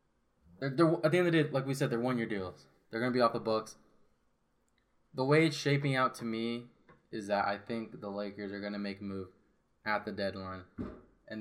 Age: 20-39